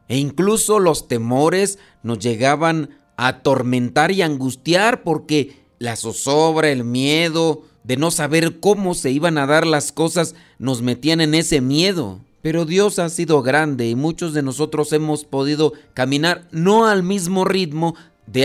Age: 40-59